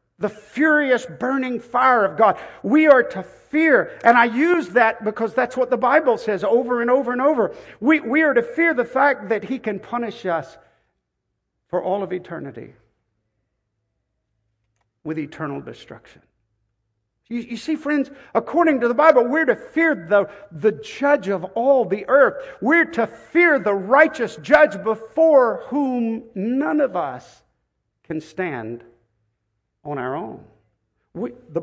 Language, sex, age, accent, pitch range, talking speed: English, male, 50-69, American, 180-270 Hz, 150 wpm